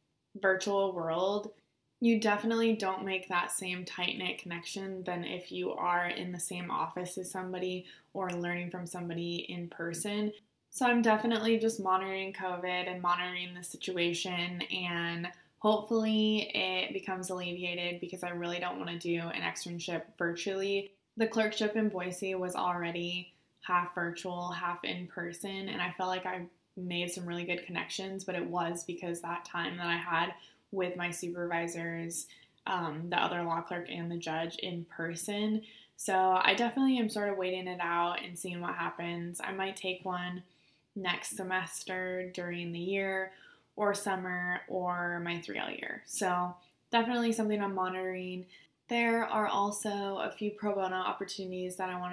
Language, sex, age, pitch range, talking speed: English, female, 20-39, 175-195 Hz, 160 wpm